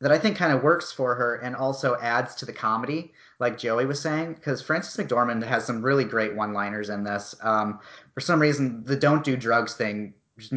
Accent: American